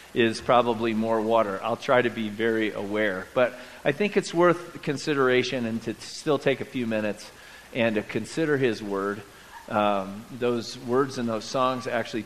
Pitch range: 115-155 Hz